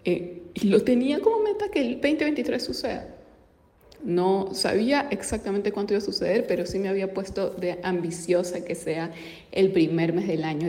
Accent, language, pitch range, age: Venezuelan, Spanish, 175-220 Hz, 30-49